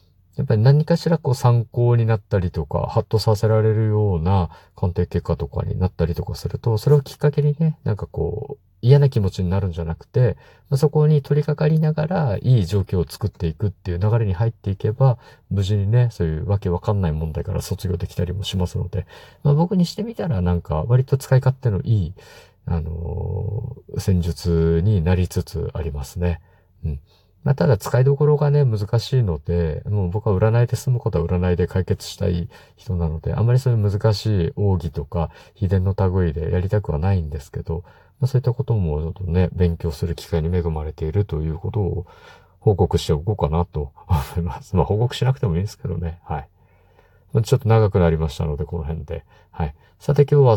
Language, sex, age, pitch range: Japanese, male, 50-69, 85-115 Hz